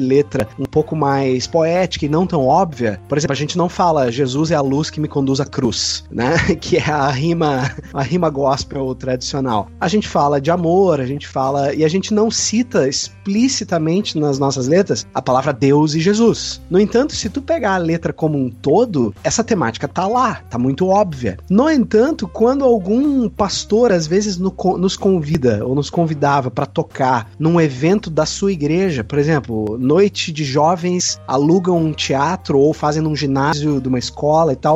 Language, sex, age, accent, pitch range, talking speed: Portuguese, male, 30-49, Brazilian, 140-200 Hz, 190 wpm